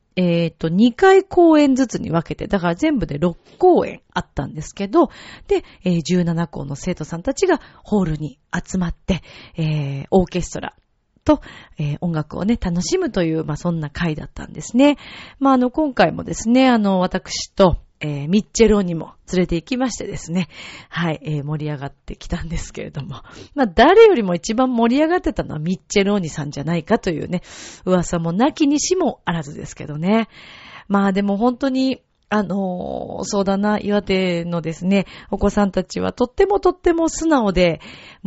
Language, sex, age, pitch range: Japanese, female, 40-59, 170-255 Hz